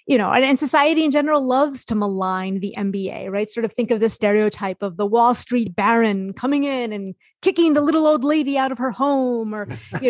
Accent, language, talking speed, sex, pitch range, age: American, English, 220 wpm, female, 205-260 Hz, 30-49